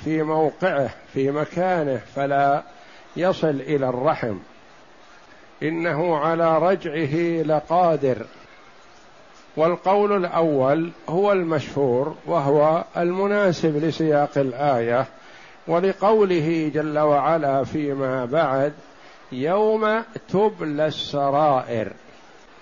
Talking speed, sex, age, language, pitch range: 75 wpm, male, 60-79, Arabic, 145-185 Hz